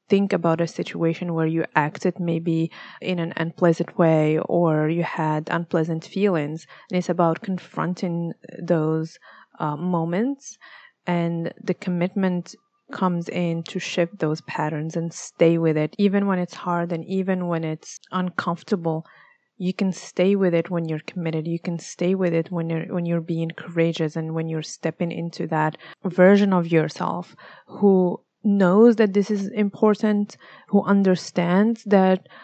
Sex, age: female, 30-49